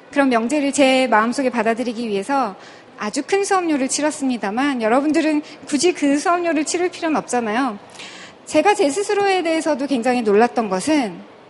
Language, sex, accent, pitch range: Korean, female, native, 235-305 Hz